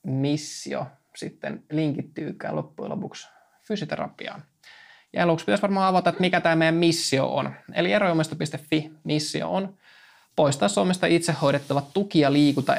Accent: native